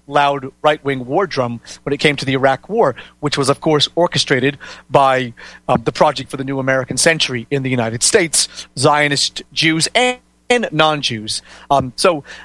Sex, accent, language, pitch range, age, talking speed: male, American, English, 135-165 Hz, 40-59, 170 wpm